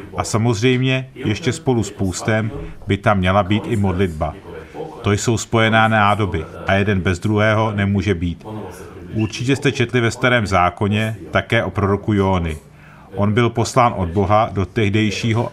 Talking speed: 150 wpm